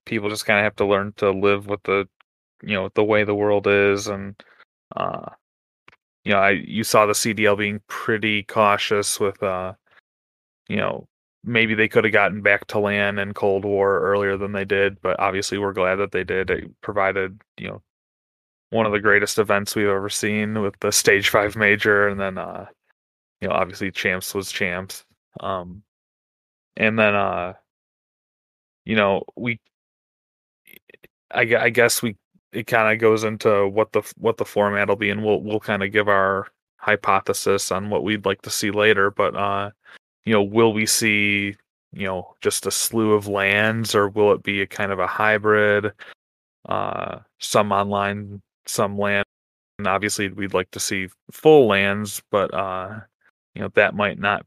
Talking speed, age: 180 wpm, 20-39